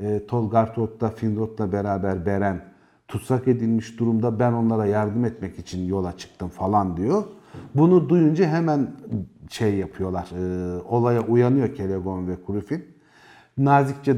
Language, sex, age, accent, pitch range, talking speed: Turkish, male, 50-69, native, 100-140 Hz, 120 wpm